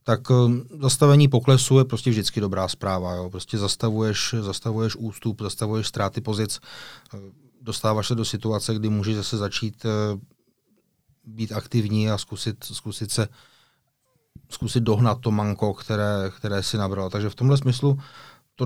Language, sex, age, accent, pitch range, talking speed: Czech, male, 30-49, native, 105-125 Hz, 140 wpm